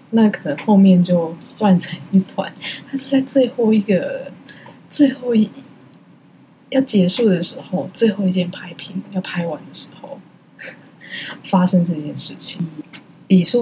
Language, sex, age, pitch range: Chinese, female, 20-39, 175-210 Hz